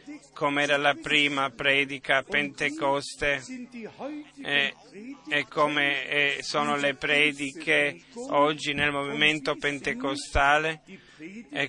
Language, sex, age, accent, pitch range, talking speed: Italian, male, 30-49, native, 140-160 Hz, 100 wpm